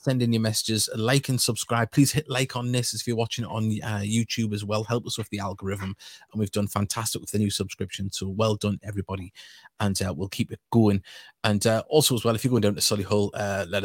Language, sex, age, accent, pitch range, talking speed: English, male, 30-49, British, 100-125 Hz, 250 wpm